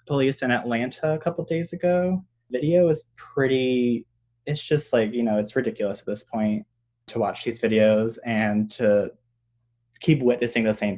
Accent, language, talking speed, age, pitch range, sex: American, English, 170 wpm, 20-39, 115-135 Hz, male